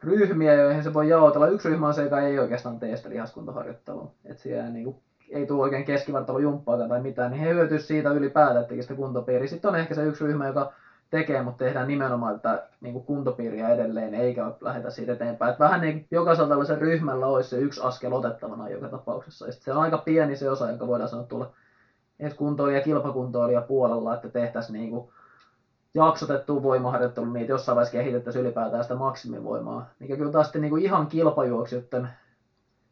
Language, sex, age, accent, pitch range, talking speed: Finnish, male, 20-39, native, 120-150 Hz, 175 wpm